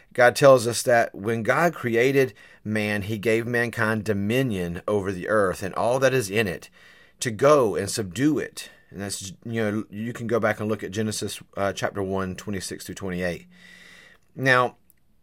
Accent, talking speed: American, 175 wpm